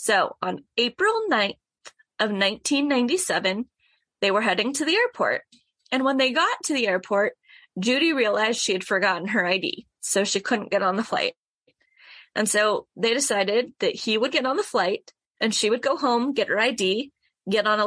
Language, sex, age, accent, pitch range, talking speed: English, female, 20-39, American, 205-275 Hz, 185 wpm